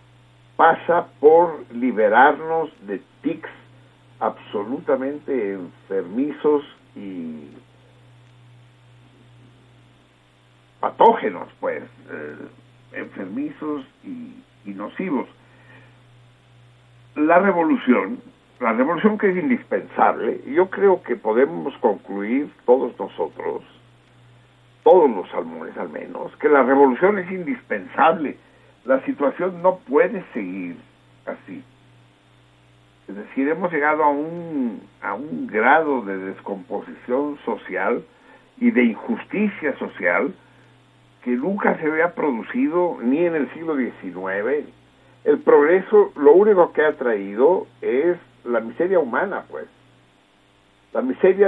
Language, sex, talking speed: Spanish, male, 100 wpm